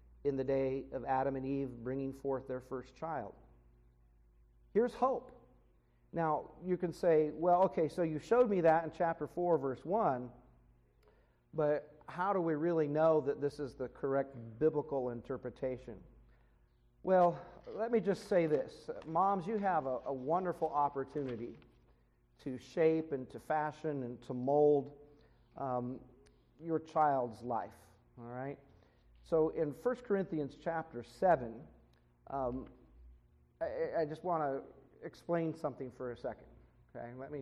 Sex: male